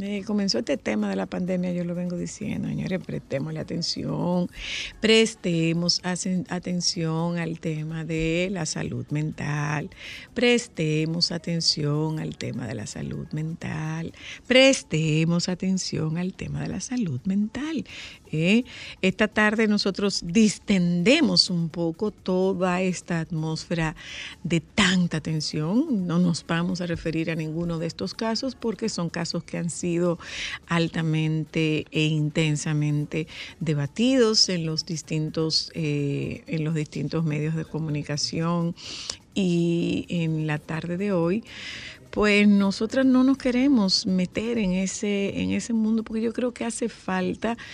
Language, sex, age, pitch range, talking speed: Spanish, female, 50-69, 160-200 Hz, 130 wpm